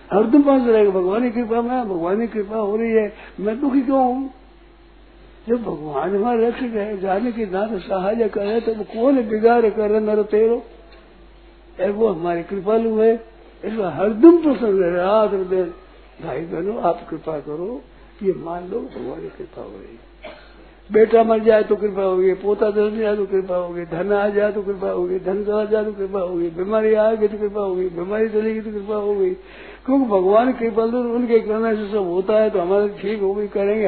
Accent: native